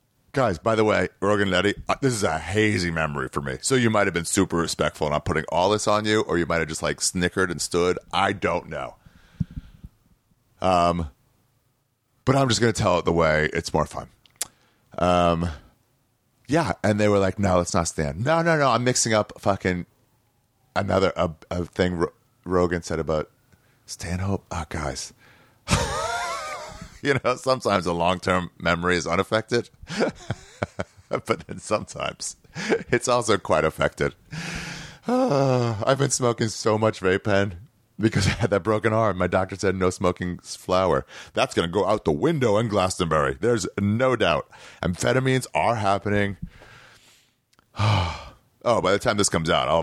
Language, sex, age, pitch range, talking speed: English, male, 30-49, 90-120 Hz, 165 wpm